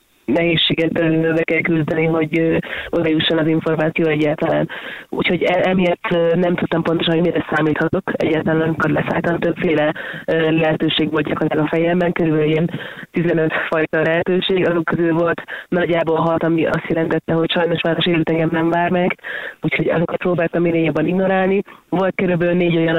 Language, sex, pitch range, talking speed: Hungarian, female, 155-170 Hz, 155 wpm